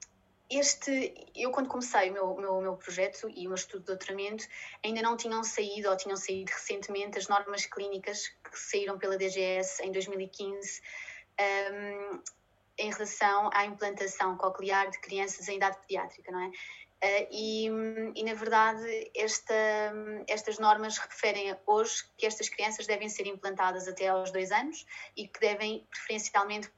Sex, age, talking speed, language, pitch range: female, 20-39, 150 wpm, Portuguese, 190-215 Hz